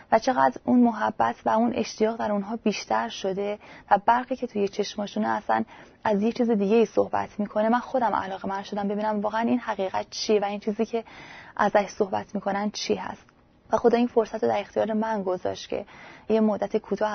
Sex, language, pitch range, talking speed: female, Persian, 195-230 Hz, 195 wpm